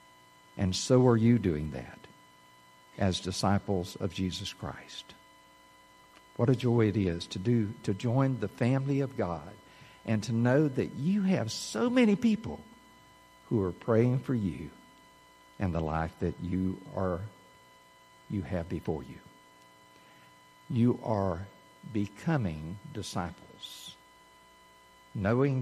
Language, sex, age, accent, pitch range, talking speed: English, male, 60-79, American, 95-130 Hz, 125 wpm